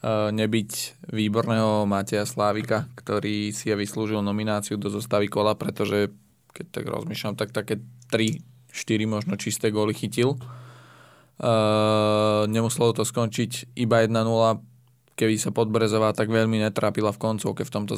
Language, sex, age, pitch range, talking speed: Slovak, male, 20-39, 105-115 Hz, 130 wpm